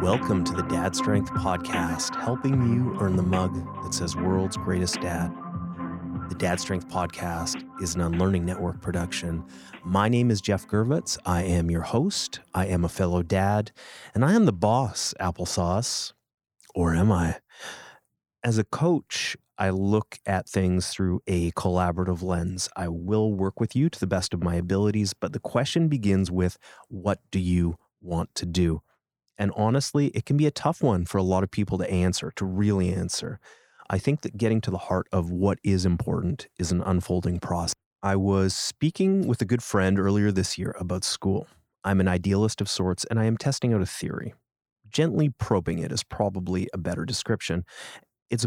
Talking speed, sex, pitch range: 180 wpm, male, 90-115 Hz